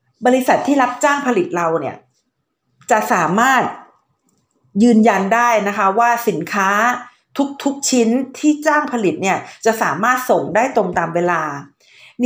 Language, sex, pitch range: Thai, female, 185-250 Hz